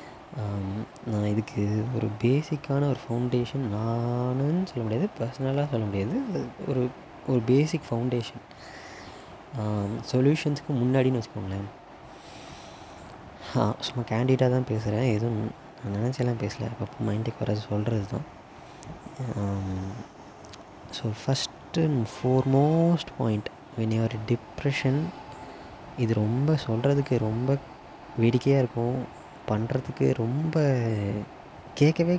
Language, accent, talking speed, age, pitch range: Tamil, native, 90 wpm, 20-39, 110-130 Hz